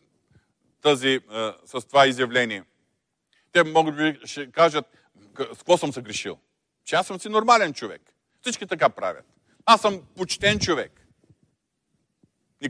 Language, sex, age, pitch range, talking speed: Bulgarian, male, 40-59, 145-195 Hz, 130 wpm